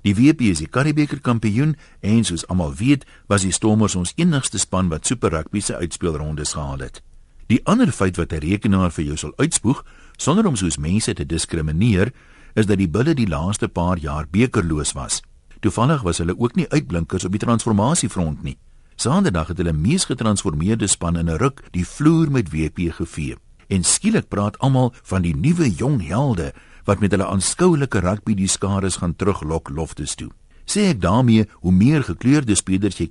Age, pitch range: 60-79, 85-130 Hz